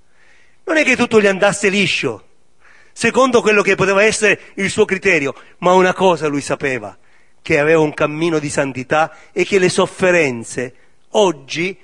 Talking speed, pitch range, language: 155 wpm, 130-200 Hz, Italian